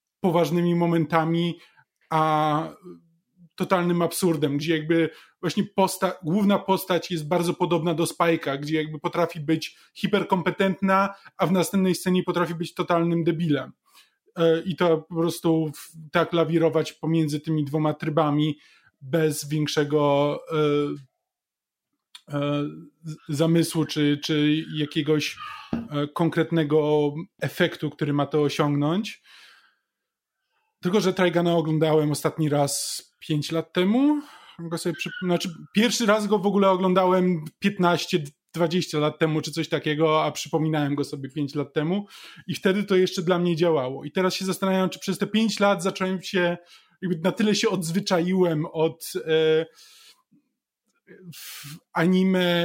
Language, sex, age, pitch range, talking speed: Polish, male, 20-39, 155-185 Hz, 125 wpm